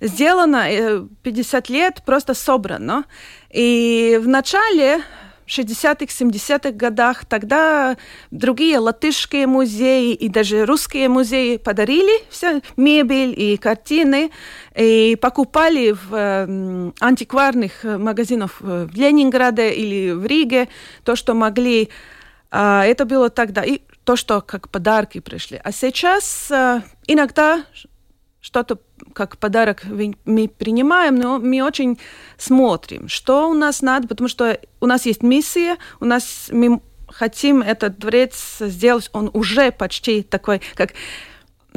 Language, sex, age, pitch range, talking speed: Russian, female, 30-49, 215-275 Hz, 115 wpm